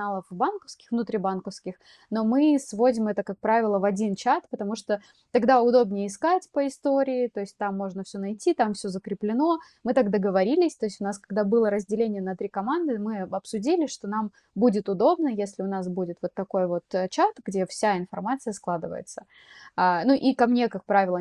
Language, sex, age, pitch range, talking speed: Russian, female, 20-39, 195-245 Hz, 180 wpm